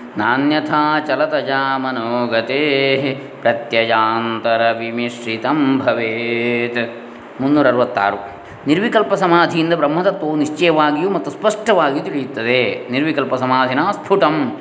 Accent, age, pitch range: native, 20-39, 115-155 Hz